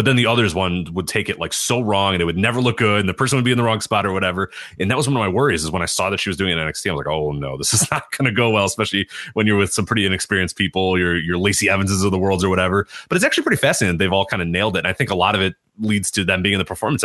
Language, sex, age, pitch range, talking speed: English, male, 30-49, 90-110 Hz, 350 wpm